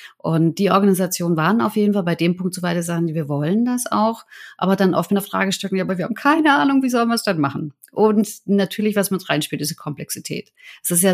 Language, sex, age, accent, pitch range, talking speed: German, female, 30-49, German, 170-210 Hz, 255 wpm